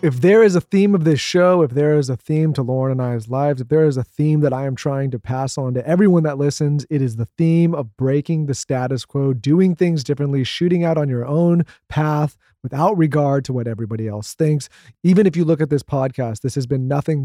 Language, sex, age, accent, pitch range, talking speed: English, male, 30-49, American, 130-160 Hz, 245 wpm